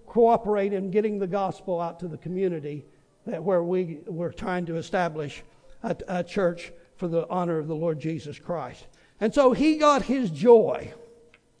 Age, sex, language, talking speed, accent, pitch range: 60-79, male, English, 170 wpm, American, 190-240 Hz